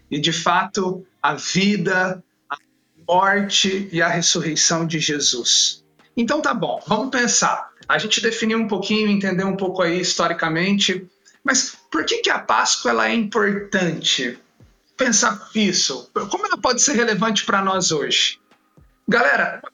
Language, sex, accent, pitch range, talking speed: Portuguese, male, Brazilian, 170-215 Hz, 145 wpm